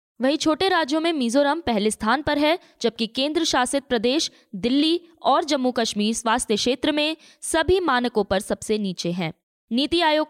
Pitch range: 215-290 Hz